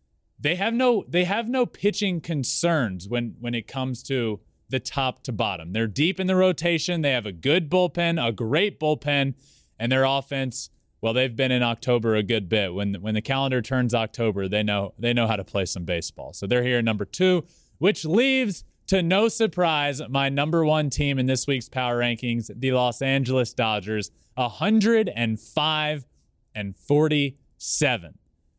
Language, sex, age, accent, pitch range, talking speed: English, male, 20-39, American, 115-155 Hz, 175 wpm